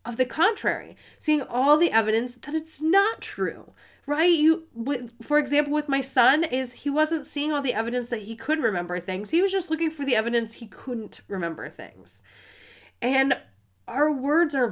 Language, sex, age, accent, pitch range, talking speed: English, female, 30-49, American, 195-295 Hz, 190 wpm